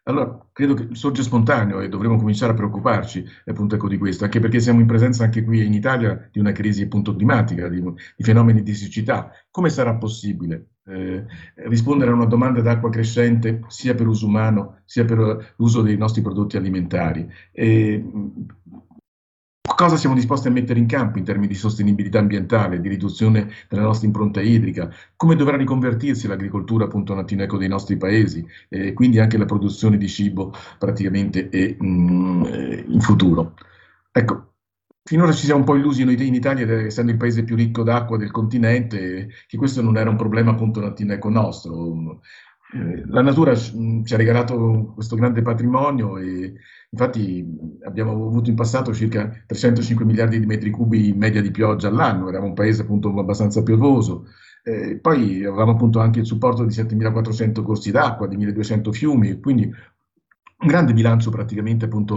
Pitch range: 100-115 Hz